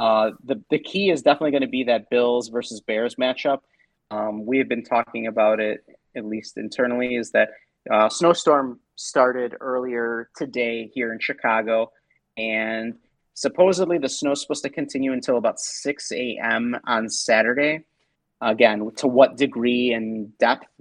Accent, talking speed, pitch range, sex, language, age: American, 160 wpm, 110-135 Hz, male, English, 30-49